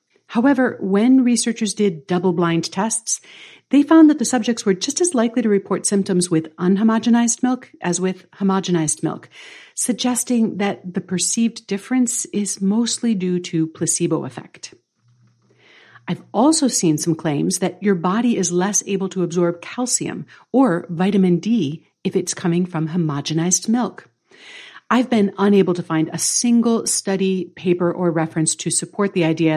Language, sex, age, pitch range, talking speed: English, female, 50-69, 175-230 Hz, 150 wpm